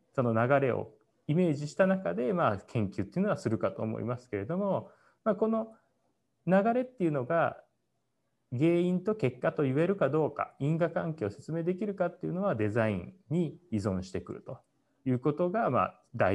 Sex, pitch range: male, 120-185 Hz